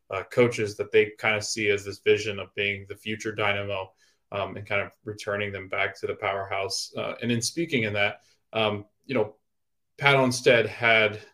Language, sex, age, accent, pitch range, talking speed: English, male, 20-39, American, 100-125 Hz, 195 wpm